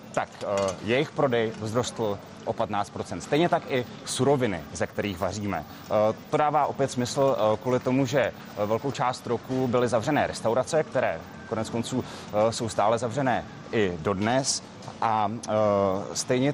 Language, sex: Czech, male